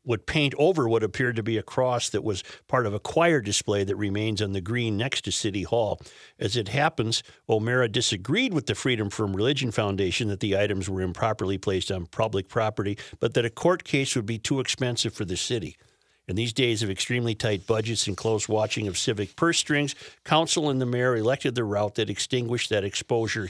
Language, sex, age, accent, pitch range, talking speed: English, male, 50-69, American, 105-145 Hz, 210 wpm